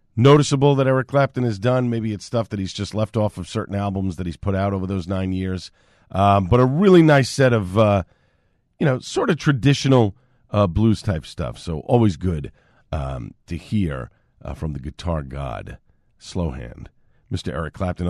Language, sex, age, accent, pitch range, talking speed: English, male, 50-69, American, 90-120 Hz, 190 wpm